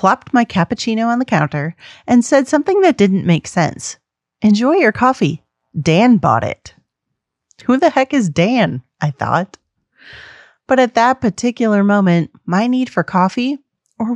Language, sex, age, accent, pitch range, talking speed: English, female, 30-49, American, 165-225 Hz, 155 wpm